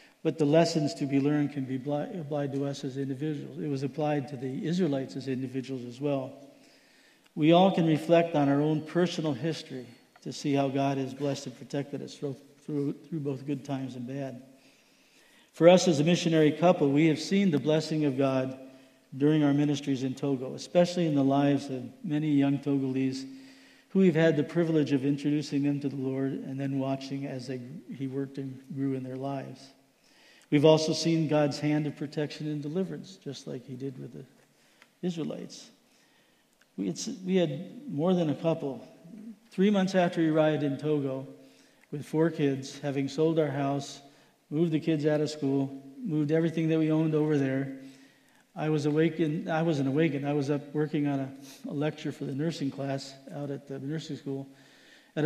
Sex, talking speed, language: male, 185 wpm, English